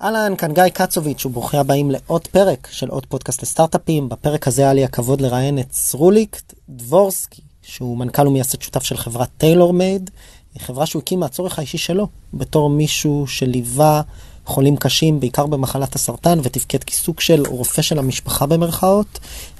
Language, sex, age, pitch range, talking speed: Hebrew, male, 20-39, 125-165 Hz, 155 wpm